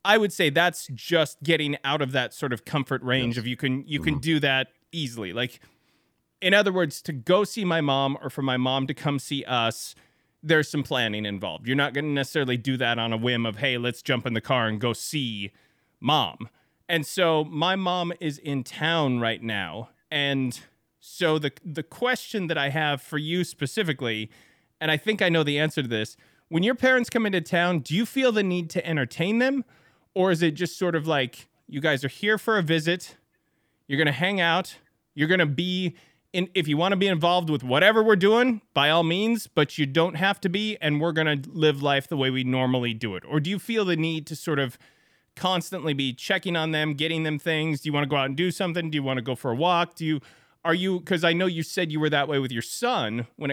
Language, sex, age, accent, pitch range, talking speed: English, male, 30-49, American, 135-175 Hz, 235 wpm